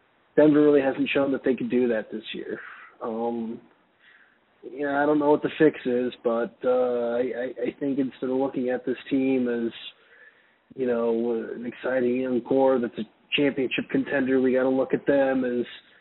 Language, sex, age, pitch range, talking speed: English, male, 20-39, 120-140 Hz, 180 wpm